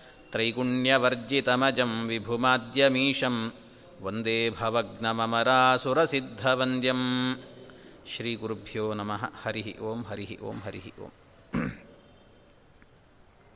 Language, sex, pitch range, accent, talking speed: Kannada, male, 130-170 Hz, native, 60 wpm